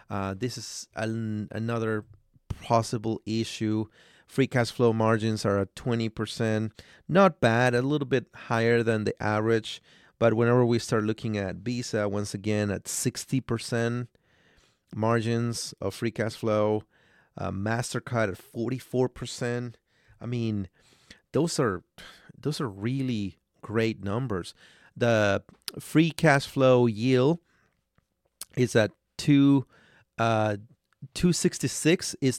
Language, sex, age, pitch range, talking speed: English, male, 30-49, 105-130 Hz, 130 wpm